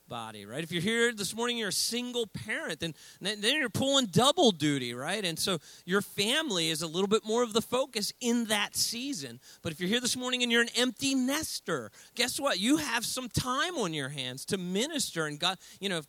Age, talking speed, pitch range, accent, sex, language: 40-59, 225 wpm, 160-235 Hz, American, male, English